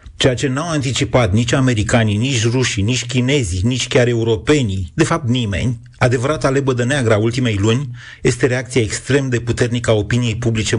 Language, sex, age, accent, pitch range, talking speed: Romanian, male, 30-49, native, 110-140 Hz, 170 wpm